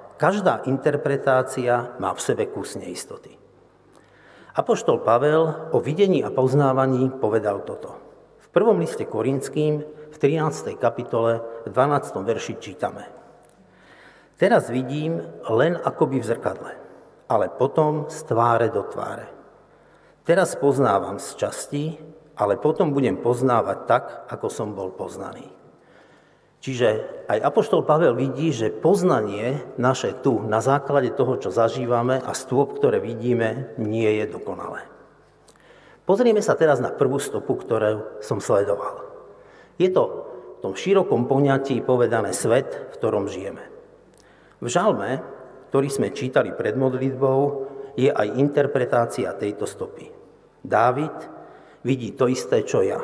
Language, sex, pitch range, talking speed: Slovak, male, 125-155 Hz, 125 wpm